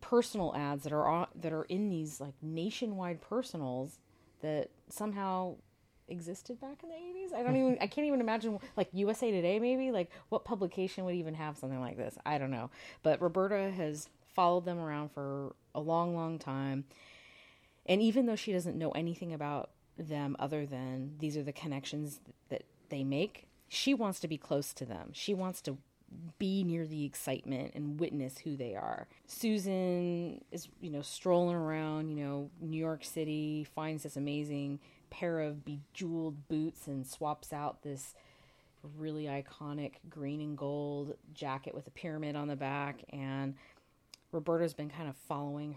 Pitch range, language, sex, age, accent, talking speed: 140-180 Hz, English, female, 30-49, American, 170 wpm